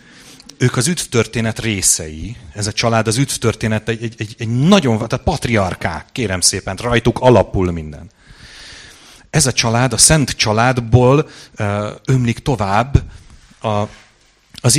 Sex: male